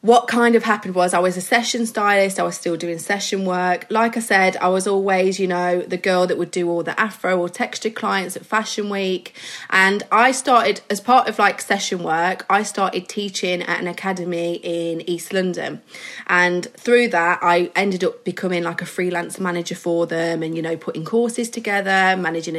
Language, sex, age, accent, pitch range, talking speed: English, female, 20-39, British, 175-210 Hz, 200 wpm